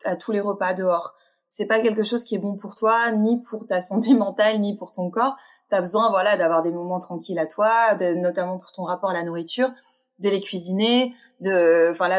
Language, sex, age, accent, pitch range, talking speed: French, female, 20-39, French, 180-235 Hz, 220 wpm